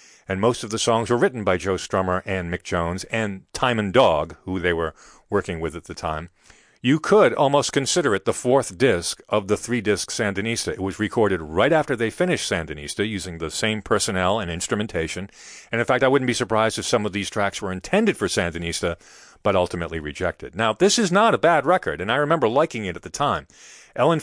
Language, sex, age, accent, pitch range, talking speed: English, male, 40-59, American, 90-125 Hz, 215 wpm